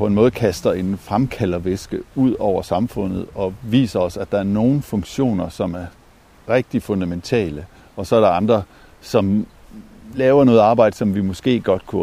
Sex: male